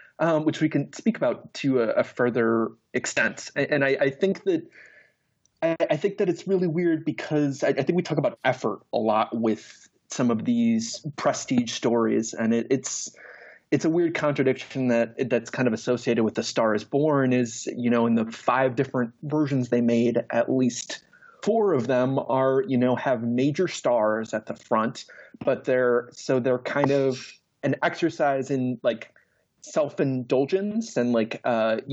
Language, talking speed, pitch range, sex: English, 180 wpm, 120-150 Hz, male